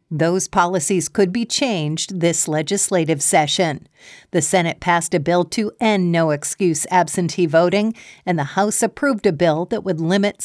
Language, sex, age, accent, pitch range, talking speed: English, female, 50-69, American, 170-210 Hz, 155 wpm